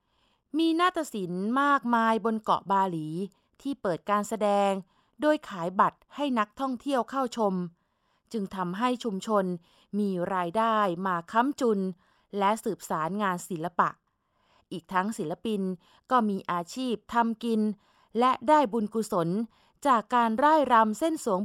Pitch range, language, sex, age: 195-245 Hz, Thai, female, 20-39